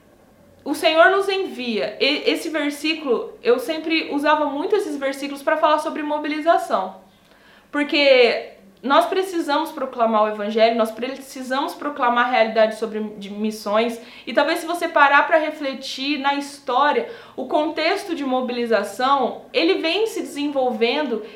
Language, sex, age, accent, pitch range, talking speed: Portuguese, female, 20-39, Brazilian, 245-330 Hz, 130 wpm